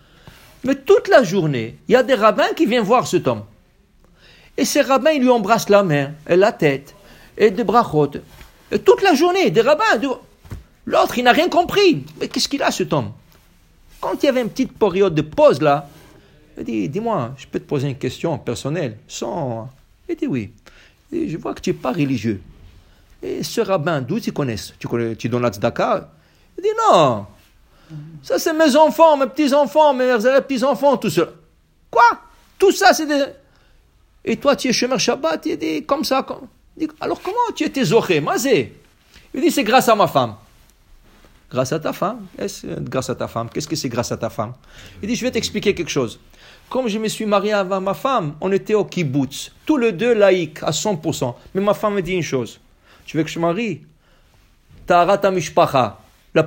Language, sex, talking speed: English, male, 205 wpm